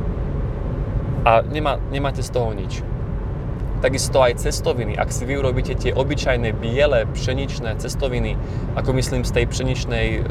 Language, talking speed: Slovak, 135 wpm